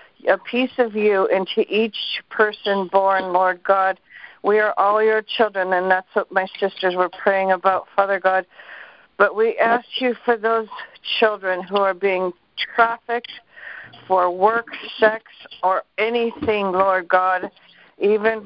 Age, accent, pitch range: 50-69, American, 190-220 Hz